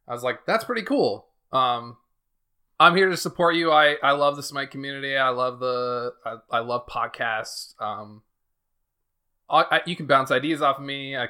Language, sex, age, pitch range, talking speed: English, male, 20-39, 120-145 Hz, 190 wpm